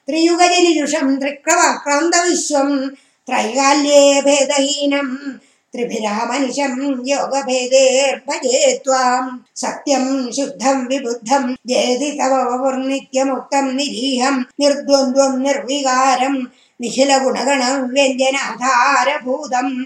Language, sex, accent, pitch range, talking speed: Tamil, female, native, 255-285 Hz, 50 wpm